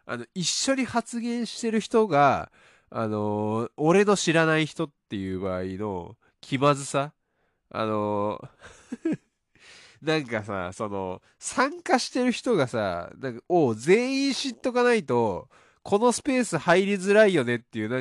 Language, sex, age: Japanese, male, 20-39